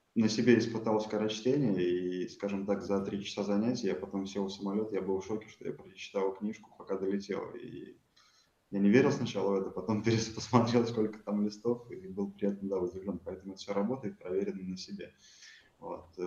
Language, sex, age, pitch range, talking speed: Russian, male, 20-39, 100-120 Hz, 190 wpm